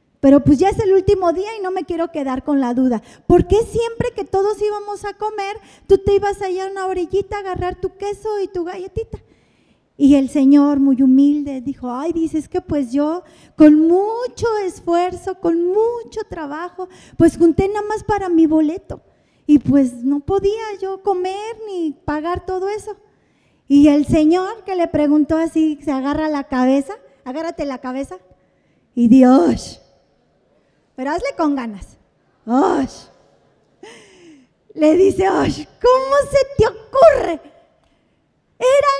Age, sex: 30-49, female